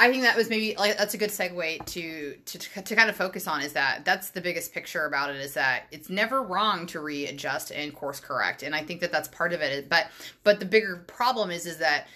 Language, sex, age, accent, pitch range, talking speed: English, female, 20-39, American, 150-195 Hz, 250 wpm